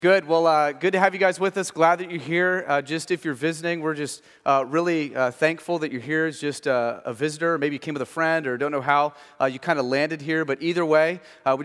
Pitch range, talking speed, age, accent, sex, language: 140-165 Hz, 280 wpm, 30-49, American, male, English